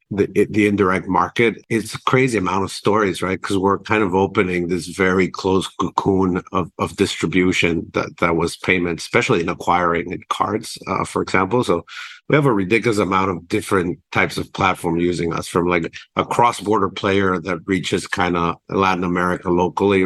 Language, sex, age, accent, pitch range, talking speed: English, male, 50-69, American, 90-100 Hz, 175 wpm